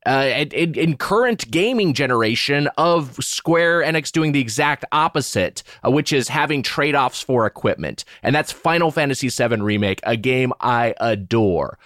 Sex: male